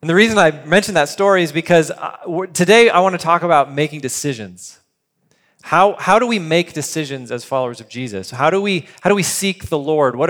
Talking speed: 215 wpm